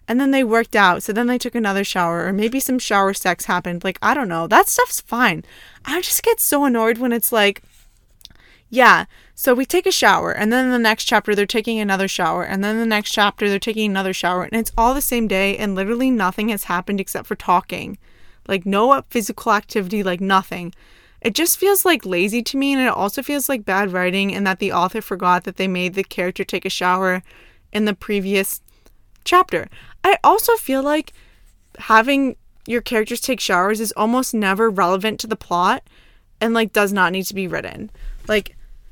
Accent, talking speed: American, 205 wpm